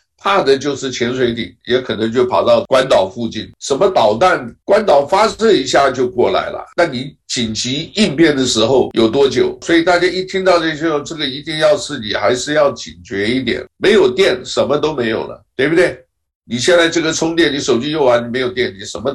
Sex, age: male, 60-79